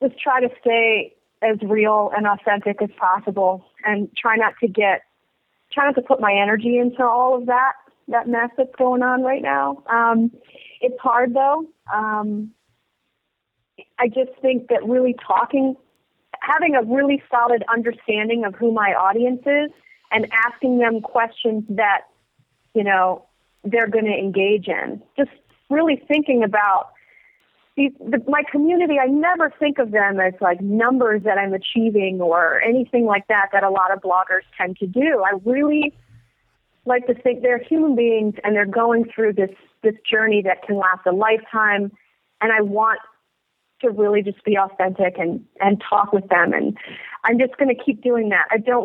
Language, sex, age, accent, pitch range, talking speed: English, female, 40-59, American, 200-250 Hz, 170 wpm